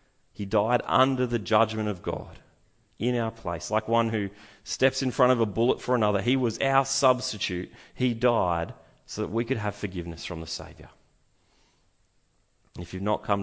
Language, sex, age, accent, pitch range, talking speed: English, male, 30-49, Australian, 95-125 Hz, 180 wpm